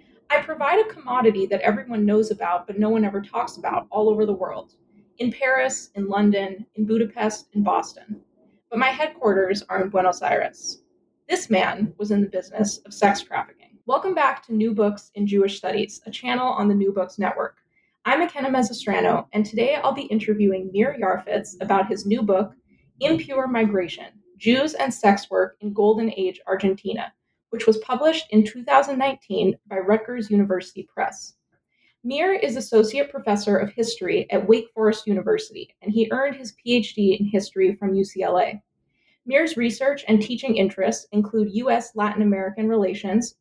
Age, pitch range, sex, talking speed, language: 20-39, 200-255 Hz, female, 165 wpm, English